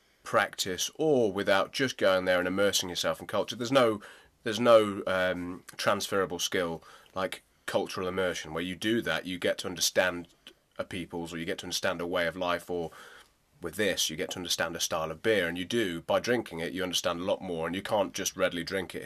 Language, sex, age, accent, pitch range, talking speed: English, male, 30-49, British, 80-95 Hz, 215 wpm